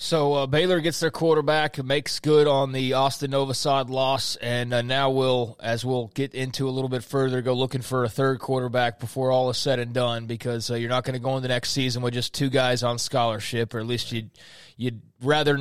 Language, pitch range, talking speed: English, 125-145 Hz, 230 wpm